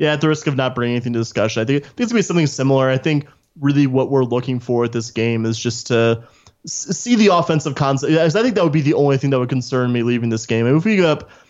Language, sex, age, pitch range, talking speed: English, male, 20-39, 120-145 Hz, 310 wpm